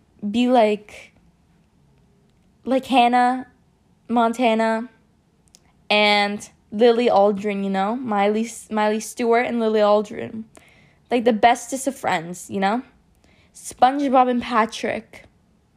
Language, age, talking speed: English, 20-39, 100 wpm